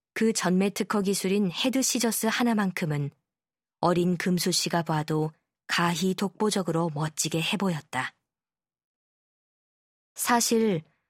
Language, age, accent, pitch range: Korean, 20-39, native, 165-210 Hz